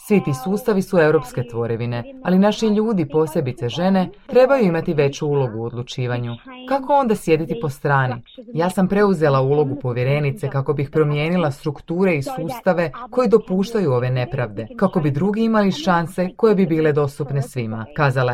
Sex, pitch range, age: female, 125-180 Hz, 30-49